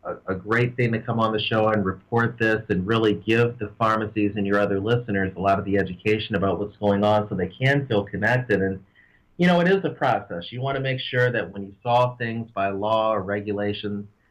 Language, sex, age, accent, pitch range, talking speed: English, male, 40-59, American, 100-115 Hz, 230 wpm